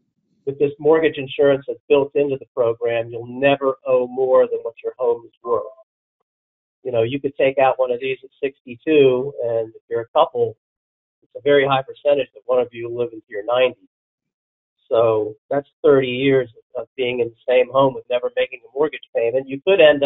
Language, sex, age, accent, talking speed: English, male, 50-69, American, 200 wpm